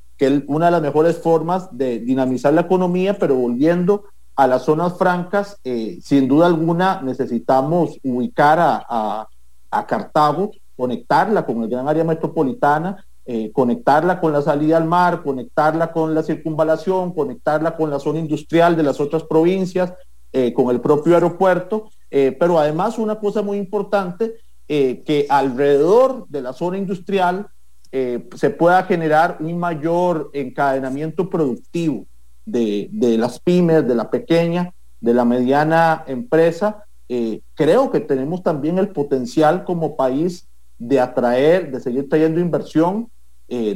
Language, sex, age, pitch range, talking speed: English, male, 40-59, 130-175 Hz, 145 wpm